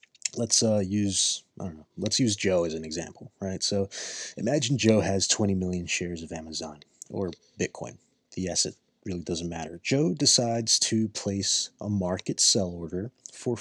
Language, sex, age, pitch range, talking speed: English, male, 30-49, 95-110 Hz, 170 wpm